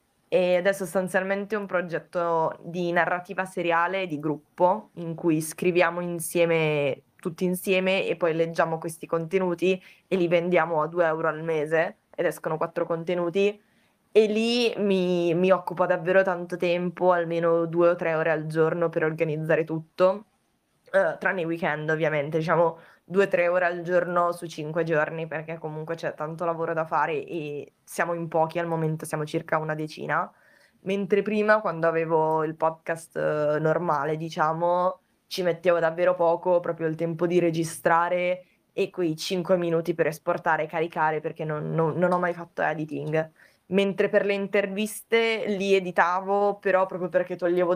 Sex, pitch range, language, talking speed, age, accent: female, 160-185 Hz, Italian, 155 wpm, 20-39, native